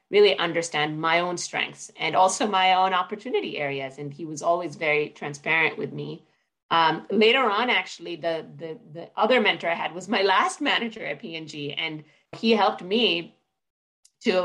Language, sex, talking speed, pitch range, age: English, female, 170 wpm, 150-180 Hz, 30-49